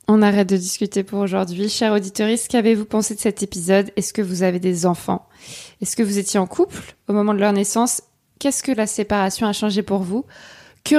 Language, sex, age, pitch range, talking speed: French, female, 20-39, 200-245 Hz, 215 wpm